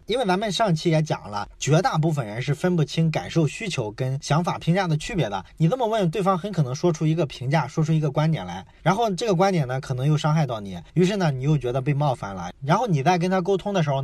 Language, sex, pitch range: Chinese, male, 145-185 Hz